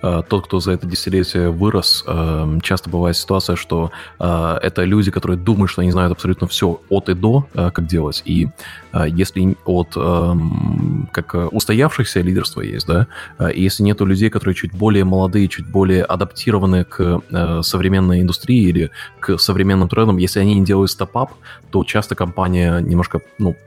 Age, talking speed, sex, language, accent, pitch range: 20-39, 150 wpm, male, Russian, native, 90-105 Hz